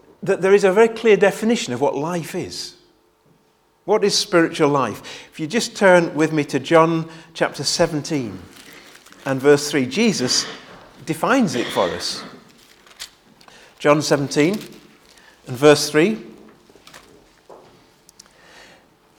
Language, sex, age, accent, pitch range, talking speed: English, male, 40-59, British, 150-215 Hz, 120 wpm